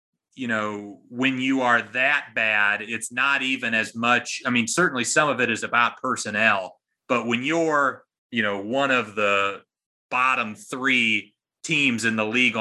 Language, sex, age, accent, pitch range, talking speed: English, male, 30-49, American, 110-130 Hz, 165 wpm